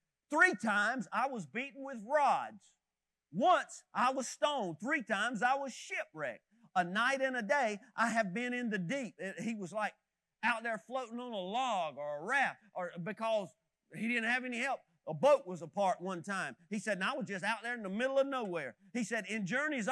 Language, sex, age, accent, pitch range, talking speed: English, male, 40-59, American, 205-270 Hz, 210 wpm